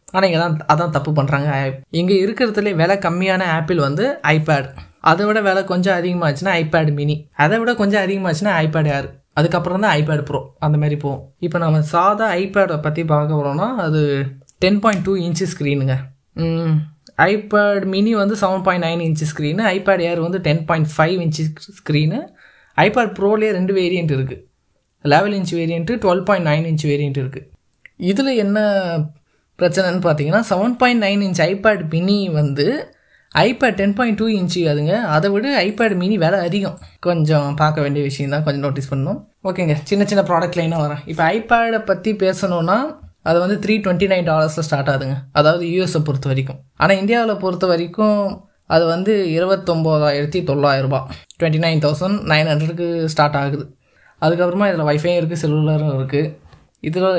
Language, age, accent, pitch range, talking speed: Tamil, 20-39, native, 150-195 Hz, 160 wpm